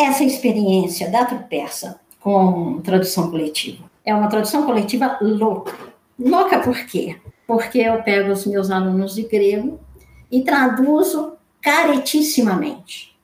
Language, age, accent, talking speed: Portuguese, 50-69, Brazilian, 120 wpm